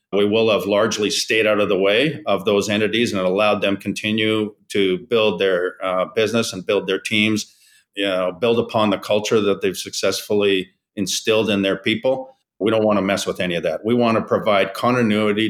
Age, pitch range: 50-69, 100-115 Hz